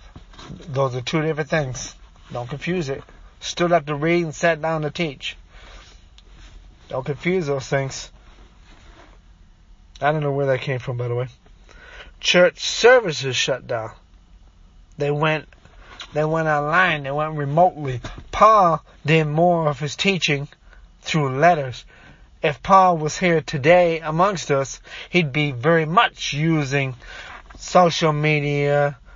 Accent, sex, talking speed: American, male, 135 wpm